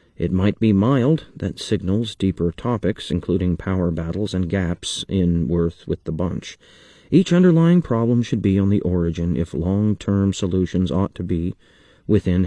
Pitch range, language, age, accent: 90-115 Hz, English, 40-59, American